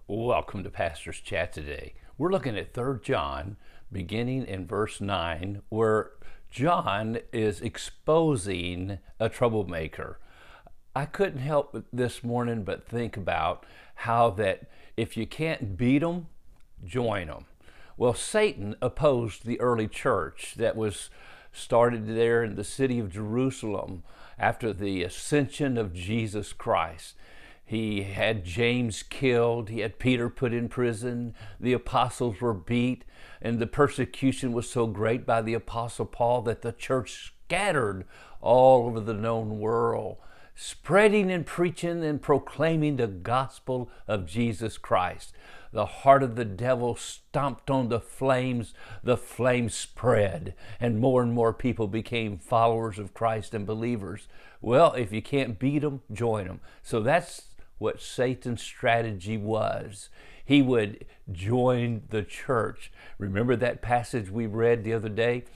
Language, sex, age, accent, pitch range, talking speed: English, male, 50-69, American, 105-125 Hz, 135 wpm